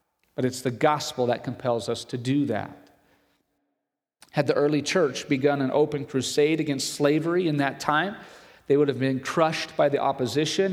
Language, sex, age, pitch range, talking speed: English, male, 40-59, 130-155 Hz, 175 wpm